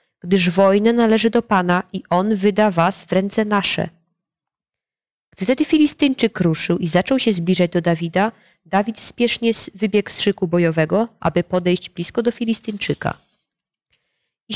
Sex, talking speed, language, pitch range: female, 140 wpm, Polish, 175-220 Hz